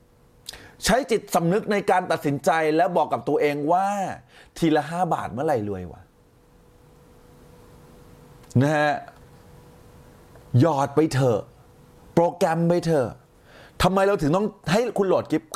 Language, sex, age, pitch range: Thai, male, 30-49, 115-175 Hz